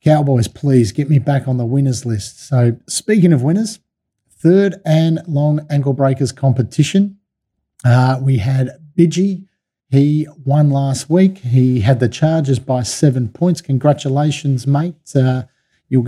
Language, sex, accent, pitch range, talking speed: English, male, Australian, 130-155 Hz, 140 wpm